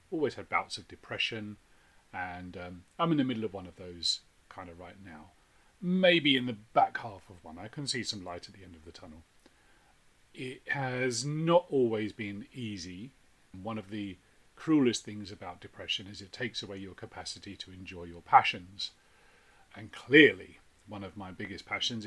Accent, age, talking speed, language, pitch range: British, 40-59, 180 wpm, English, 90-115 Hz